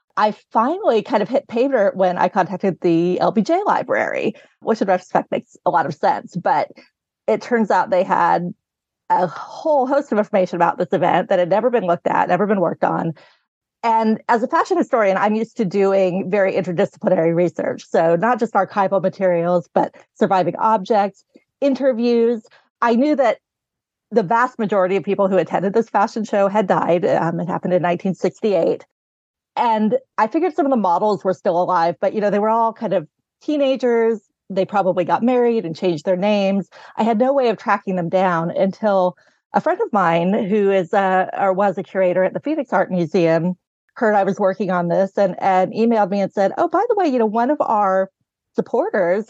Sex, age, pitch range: female, 30-49, 185-235 Hz